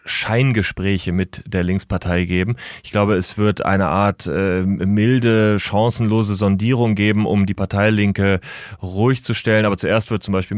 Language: German